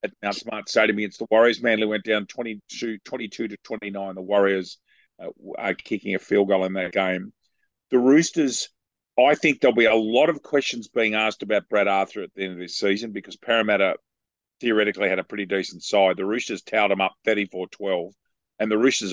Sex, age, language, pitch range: male, 40-59, English, 100-120 Hz